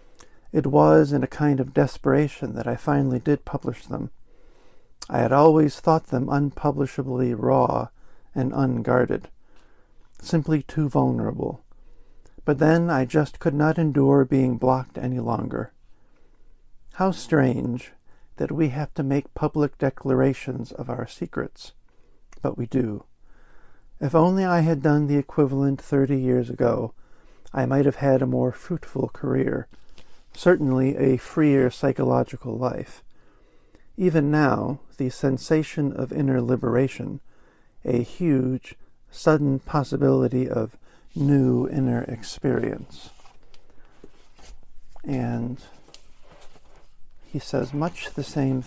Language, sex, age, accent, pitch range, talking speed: English, male, 50-69, American, 125-150 Hz, 115 wpm